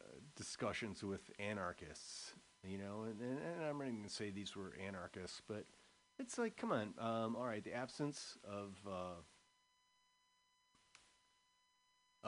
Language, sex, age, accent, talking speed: English, male, 40-59, American, 135 wpm